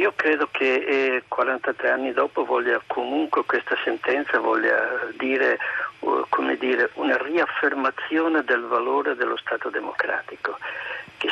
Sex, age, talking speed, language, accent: male, 50-69, 115 wpm, Italian, native